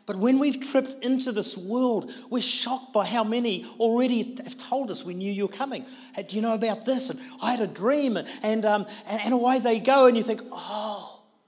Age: 40-59